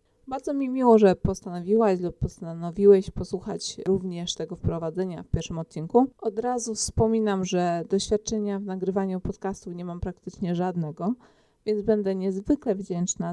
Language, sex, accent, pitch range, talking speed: Polish, female, native, 170-205 Hz, 135 wpm